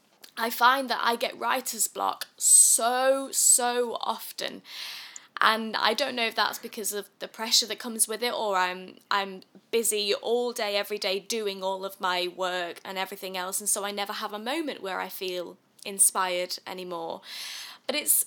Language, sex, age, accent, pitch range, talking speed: English, female, 10-29, British, 200-255 Hz, 175 wpm